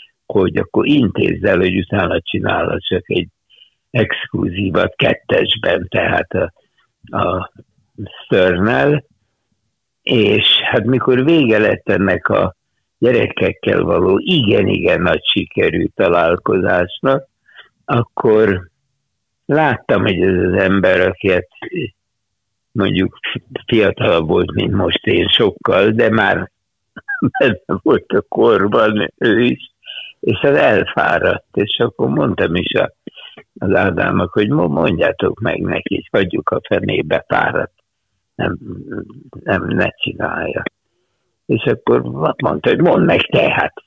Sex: male